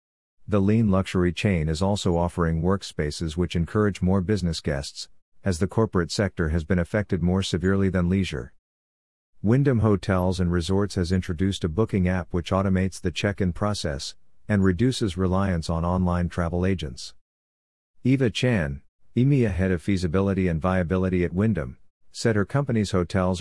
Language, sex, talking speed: English, male, 155 wpm